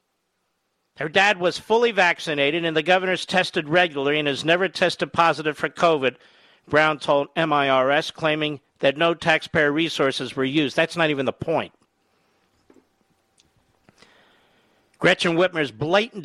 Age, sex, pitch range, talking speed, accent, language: 50-69, male, 150-190 Hz, 130 wpm, American, English